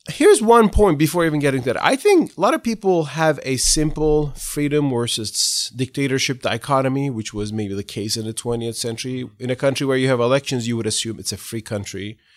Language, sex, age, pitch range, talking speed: English, male, 30-49, 110-150 Hz, 215 wpm